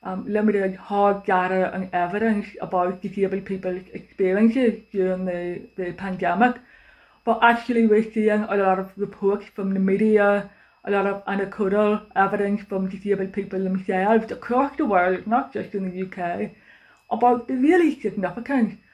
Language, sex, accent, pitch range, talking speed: English, female, British, 185-225 Hz, 145 wpm